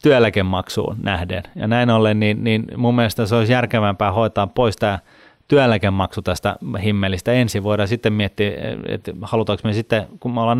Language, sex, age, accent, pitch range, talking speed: Finnish, male, 30-49, native, 100-115 Hz, 165 wpm